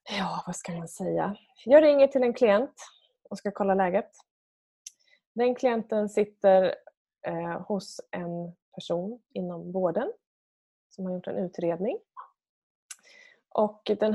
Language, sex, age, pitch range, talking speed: Swedish, female, 20-39, 175-255 Hz, 125 wpm